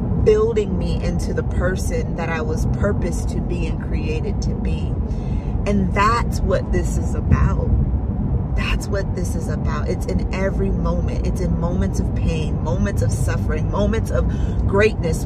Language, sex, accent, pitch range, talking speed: English, female, American, 95-110 Hz, 160 wpm